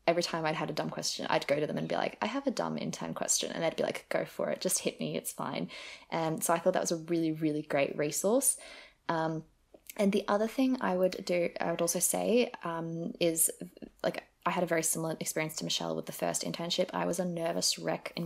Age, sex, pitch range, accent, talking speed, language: 20-39, female, 165-190 Hz, Australian, 250 wpm, English